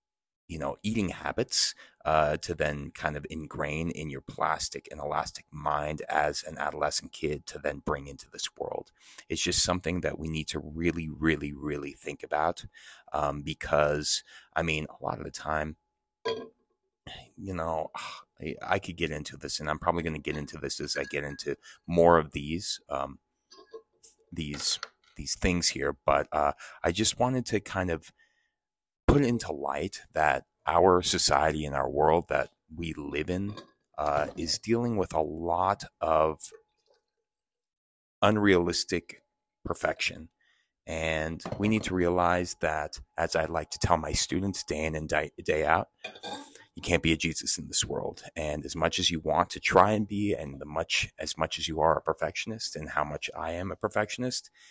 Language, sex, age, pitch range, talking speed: English, male, 30-49, 75-95 Hz, 175 wpm